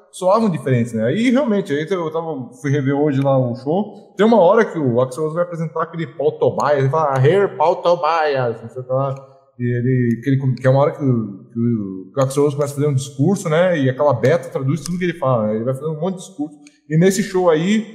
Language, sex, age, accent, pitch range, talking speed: Portuguese, male, 20-39, Brazilian, 125-175 Hz, 235 wpm